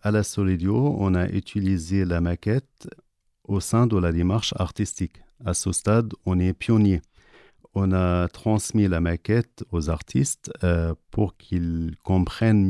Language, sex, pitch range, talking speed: French, male, 85-105 Hz, 145 wpm